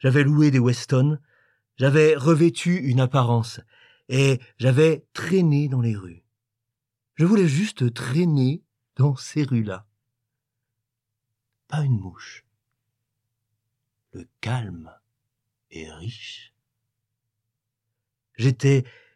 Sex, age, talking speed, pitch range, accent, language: male, 50-69, 90 wpm, 115-140 Hz, French, French